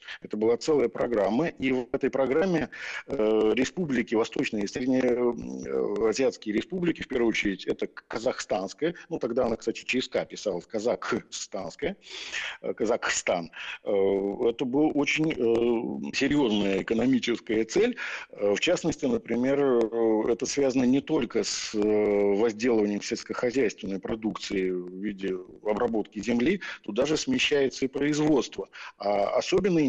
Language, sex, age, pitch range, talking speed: Russian, male, 50-69, 110-140 Hz, 105 wpm